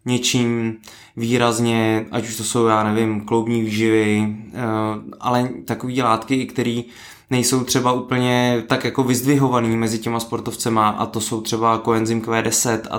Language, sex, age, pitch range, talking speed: Czech, male, 20-39, 110-125 Hz, 135 wpm